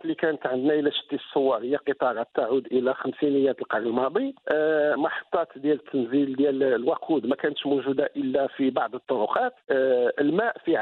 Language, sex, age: Arabic, male, 50-69